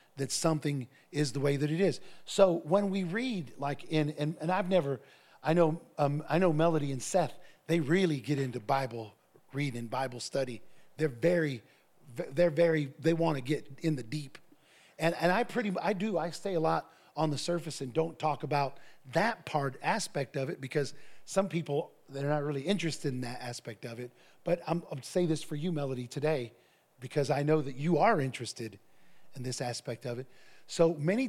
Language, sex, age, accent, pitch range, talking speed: English, male, 40-59, American, 135-165 Hz, 195 wpm